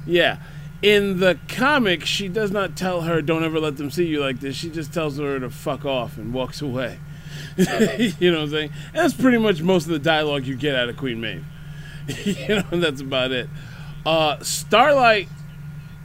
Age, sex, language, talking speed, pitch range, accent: 30-49, male, English, 195 wpm, 145-175 Hz, American